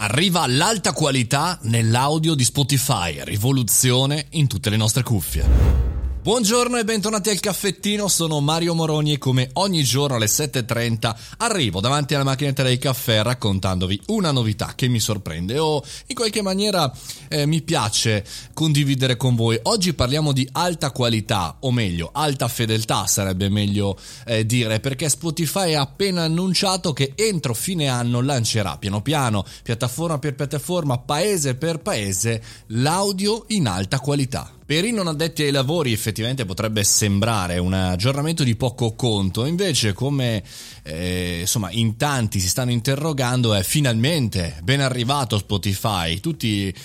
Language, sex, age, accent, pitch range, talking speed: Italian, male, 30-49, native, 105-145 Hz, 145 wpm